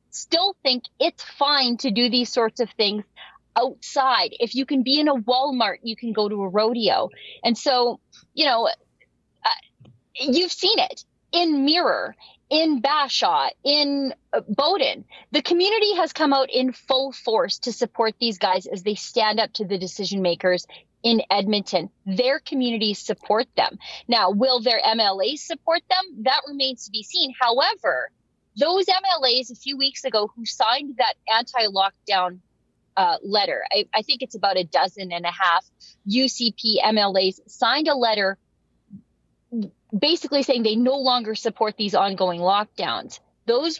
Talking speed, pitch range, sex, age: 155 wpm, 210-275 Hz, female, 30-49